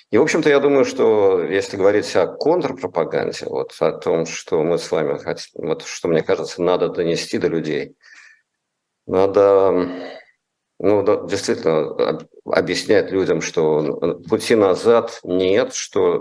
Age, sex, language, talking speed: 50-69, male, Russian, 135 wpm